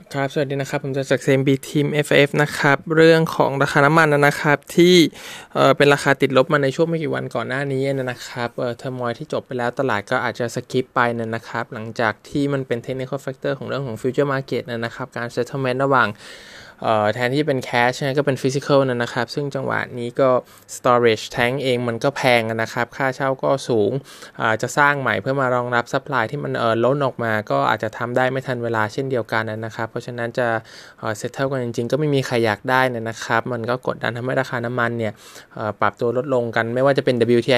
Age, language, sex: 20-39, Thai, male